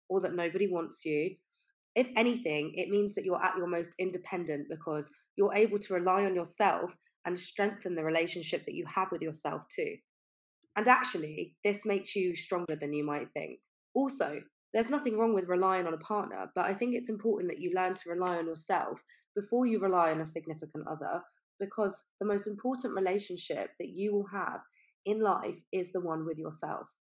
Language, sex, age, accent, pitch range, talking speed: English, female, 20-39, British, 165-205 Hz, 190 wpm